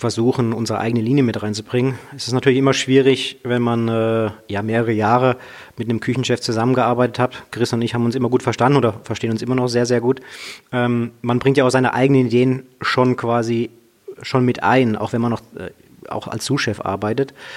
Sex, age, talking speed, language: male, 30-49, 205 wpm, German